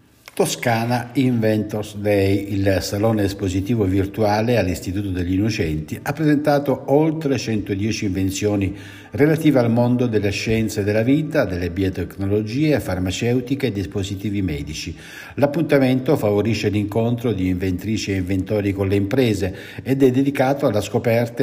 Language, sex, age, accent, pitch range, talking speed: Italian, male, 50-69, native, 95-120 Hz, 120 wpm